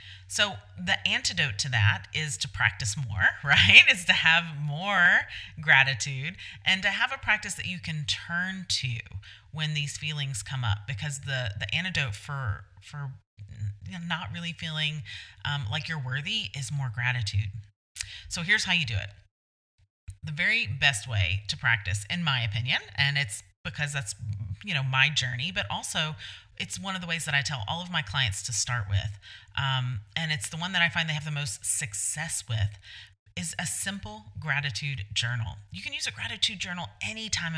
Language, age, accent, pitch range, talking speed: English, 30-49, American, 105-150 Hz, 180 wpm